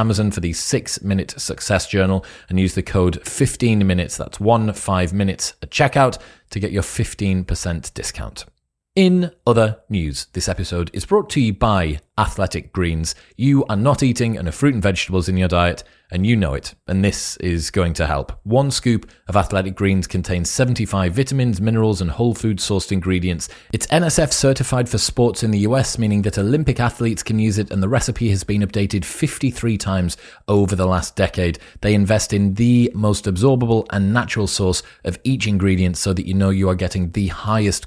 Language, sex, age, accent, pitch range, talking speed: English, male, 30-49, British, 90-115 Hz, 190 wpm